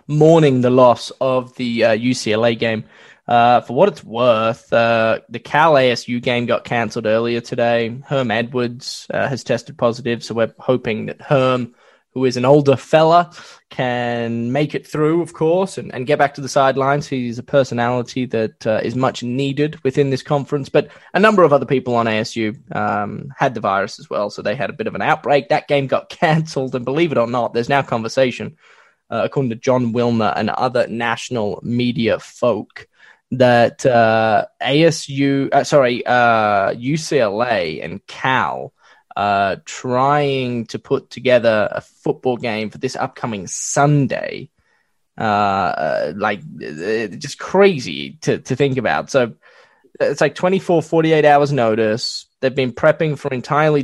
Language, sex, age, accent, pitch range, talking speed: English, male, 10-29, Australian, 115-145 Hz, 165 wpm